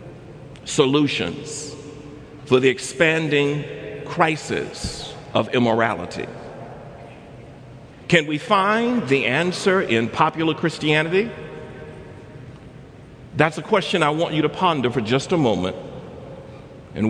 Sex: male